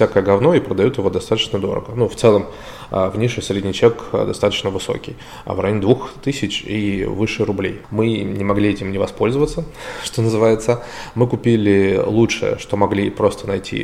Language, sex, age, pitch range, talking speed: Russian, male, 20-39, 100-120 Hz, 165 wpm